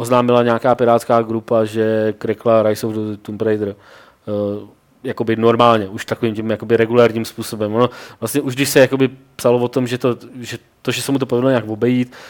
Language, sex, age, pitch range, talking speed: Czech, male, 20-39, 110-125 Hz, 175 wpm